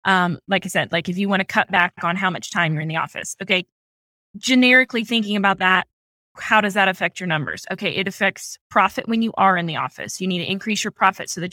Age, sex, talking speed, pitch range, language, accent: 20-39, female, 250 wpm, 185-215 Hz, English, American